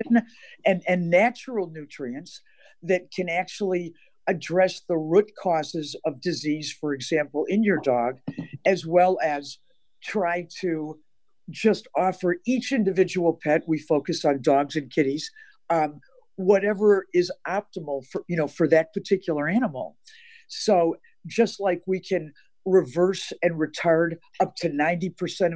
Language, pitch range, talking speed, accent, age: English, 160-200 Hz, 130 wpm, American, 50-69